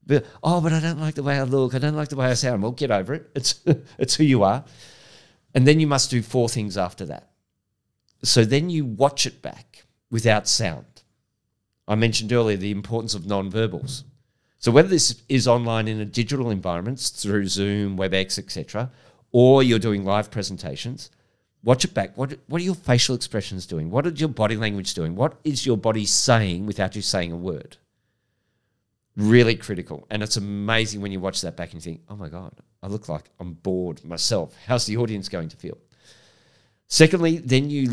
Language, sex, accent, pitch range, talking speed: English, male, Australian, 100-130 Hz, 200 wpm